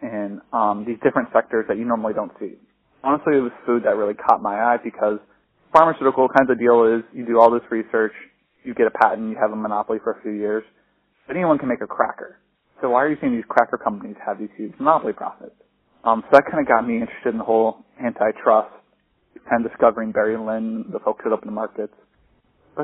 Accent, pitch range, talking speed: American, 110-135 Hz, 220 wpm